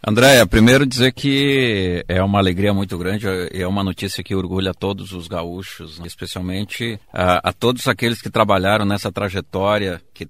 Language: Portuguese